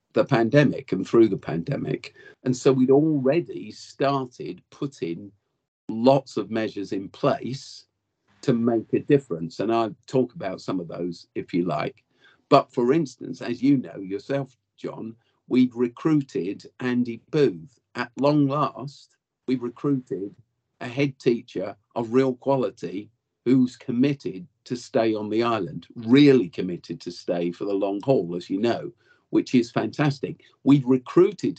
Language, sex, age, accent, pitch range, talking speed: English, male, 50-69, British, 115-140 Hz, 150 wpm